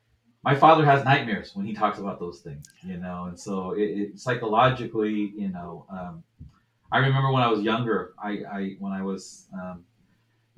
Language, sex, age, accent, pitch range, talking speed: English, male, 30-49, American, 100-120 Hz, 180 wpm